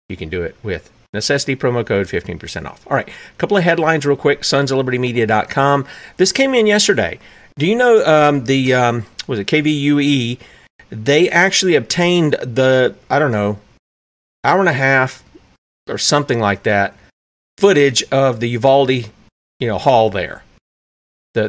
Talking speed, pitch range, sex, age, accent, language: 160 wpm, 125-180 Hz, male, 40-59, American, English